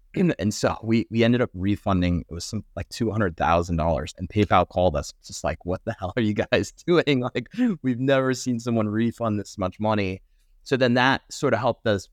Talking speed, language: 210 wpm, English